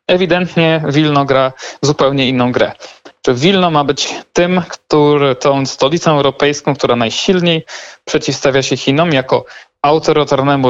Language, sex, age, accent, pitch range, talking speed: Polish, male, 40-59, native, 130-165 Hz, 125 wpm